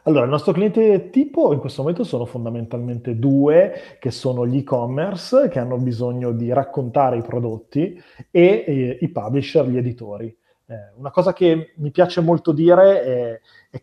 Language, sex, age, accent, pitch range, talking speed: Italian, male, 20-39, native, 120-145 Hz, 165 wpm